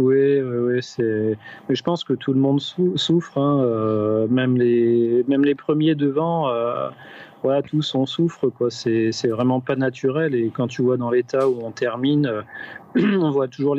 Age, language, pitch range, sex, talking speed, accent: 30-49, French, 115-140 Hz, male, 195 wpm, French